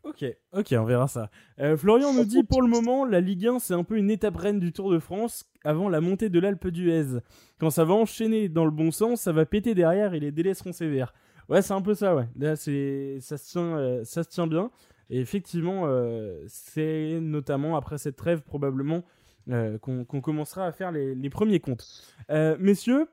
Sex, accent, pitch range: male, French, 150-200 Hz